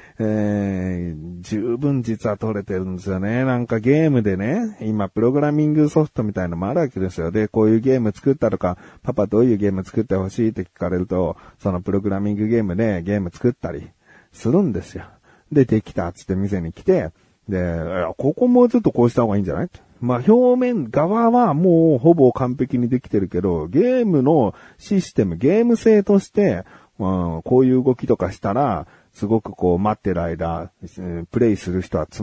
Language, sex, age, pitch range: Japanese, male, 40-59, 90-145 Hz